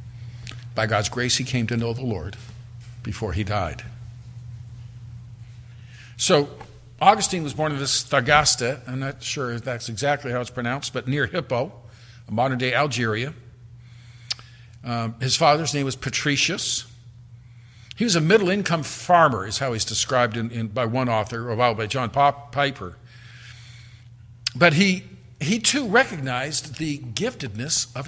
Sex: male